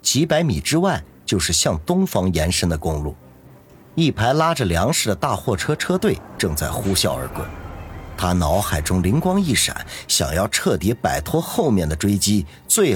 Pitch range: 80-125 Hz